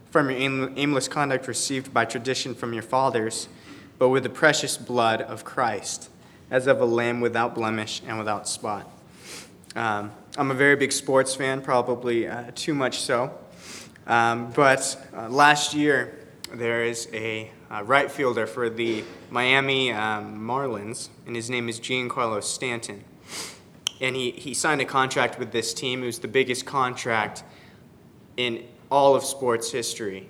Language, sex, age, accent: English, male, 20-39, American